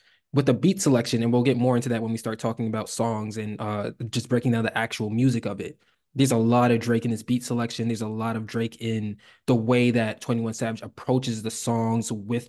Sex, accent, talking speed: male, American, 240 wpm